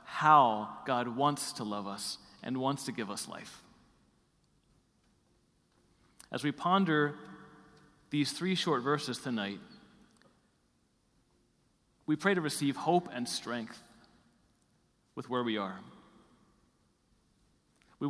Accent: American